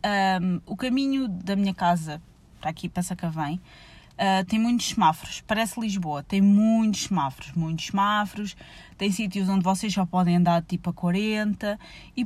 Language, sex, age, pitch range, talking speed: Portuguese, female, 20-39, 185-255 Hz, 160 wpm